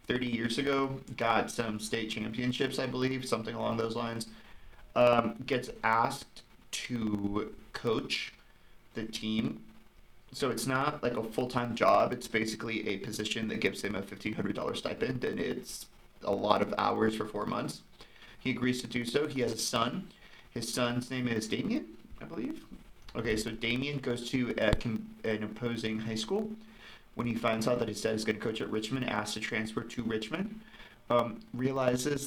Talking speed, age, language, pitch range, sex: 170 wpm, 30-49, English, 110-125 Hz, male